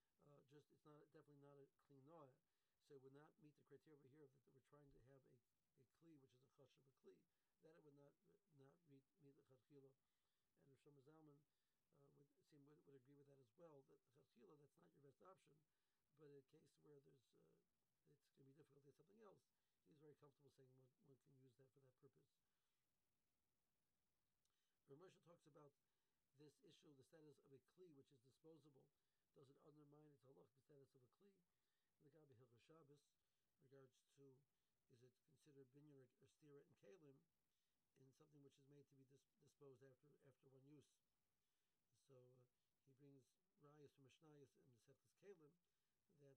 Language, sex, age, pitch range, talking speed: English, male, 60-79, 135-150 Hz, 190 wpm